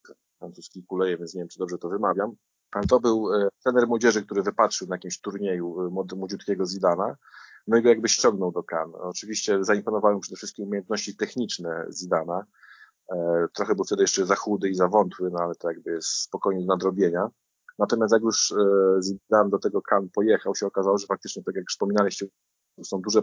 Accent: native